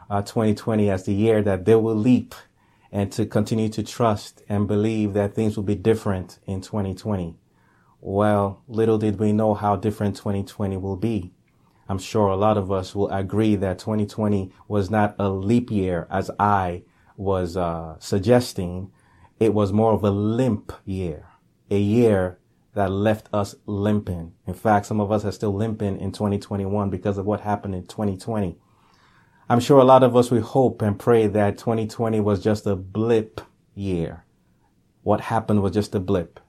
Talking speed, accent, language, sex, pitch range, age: 175 wpm, American, English, male, 95-110 Hz, 30-49